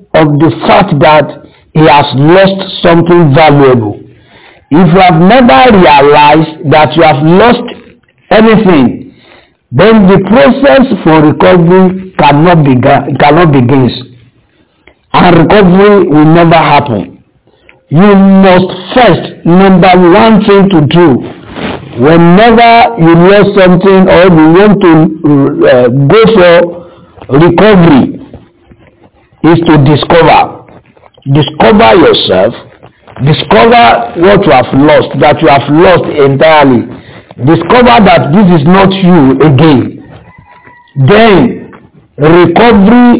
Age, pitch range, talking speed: 60-79, 145-195 Hz, 105 wpm